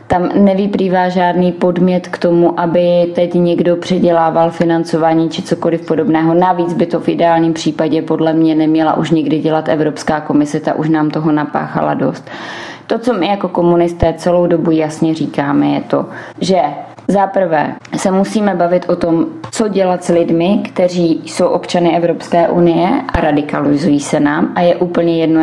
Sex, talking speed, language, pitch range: female, 165 wpm, Czech, 155-175 Hz